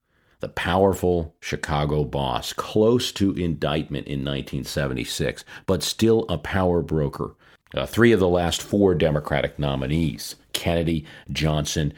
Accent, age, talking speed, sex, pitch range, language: American, 50-69, 120 wpm, male, 75-95 Hz, English